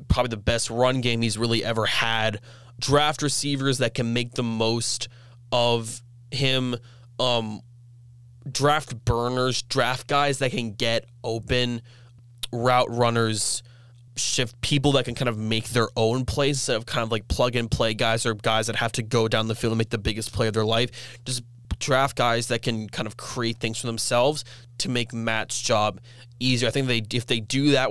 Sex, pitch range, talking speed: male, 115-125 Hz, 185 wpm